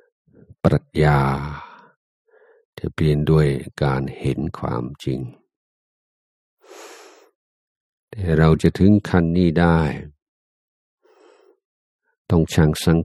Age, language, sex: 50-69, Thai, male